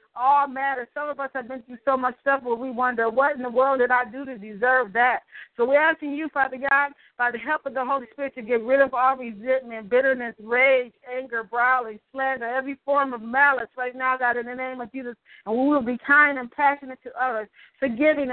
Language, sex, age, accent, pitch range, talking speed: English, female, 40-59, American, 245-275 Hz, 230 wpm